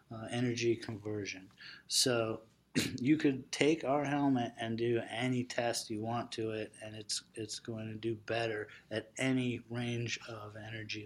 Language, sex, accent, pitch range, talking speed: English, male, American, 115-130 Hz, 155 wpm